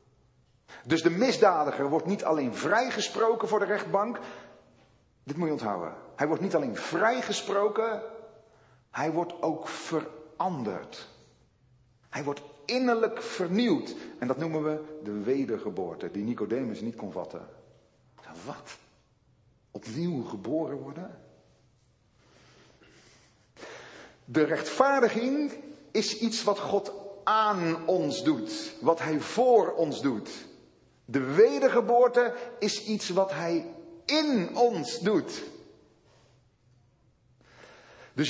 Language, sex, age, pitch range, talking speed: Dutch, male, 40-59, 155-235 Hz, 105 wpm